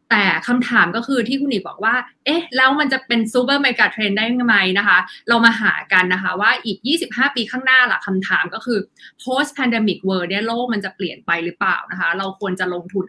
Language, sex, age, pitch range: Thai, female, 20-39, 185-235 Hz